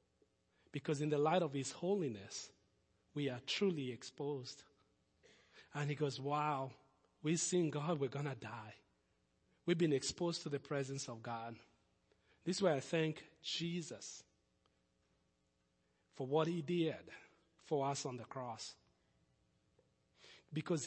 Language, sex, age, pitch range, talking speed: English, male, 40-59, 130-215 Hz, 130 wpm